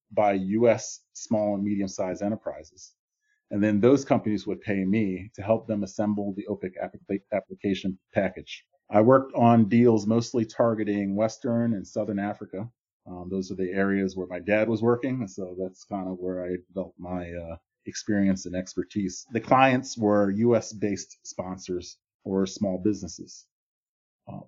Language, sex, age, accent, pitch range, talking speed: English, male, 30-49, American, 95-115 Hz, 150 wpm